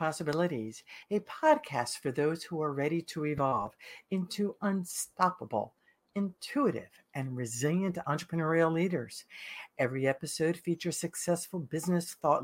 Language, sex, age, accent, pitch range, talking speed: English, female, 60-79, American, 145-200 Hz, 110 wpm